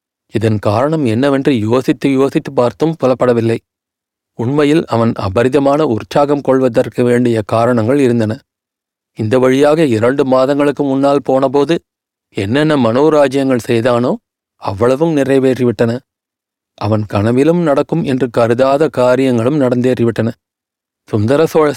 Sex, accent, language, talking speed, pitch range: male, native, Tamil, 95 wpm, 120-145 Hz